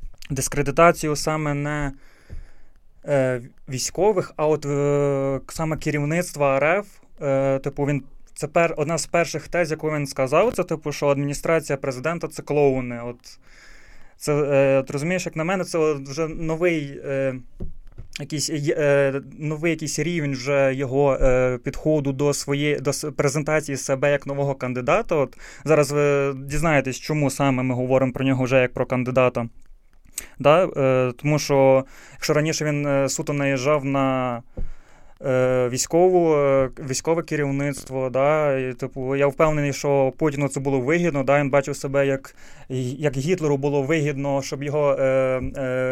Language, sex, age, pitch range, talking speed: Ukrainian, male, 20-39, 135-150 Hz, 145 wpm